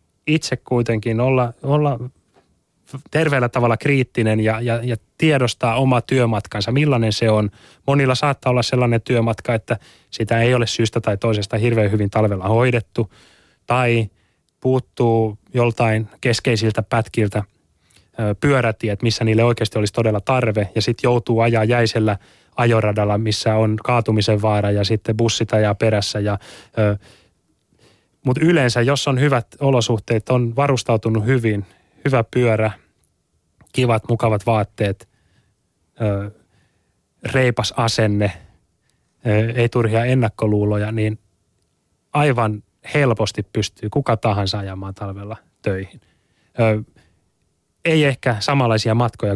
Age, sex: 20-39, male